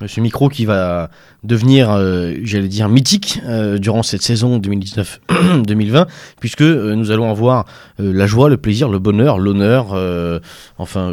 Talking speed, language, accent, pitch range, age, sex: 150 wpm, French, French, 95-125 Hz, 30-49, male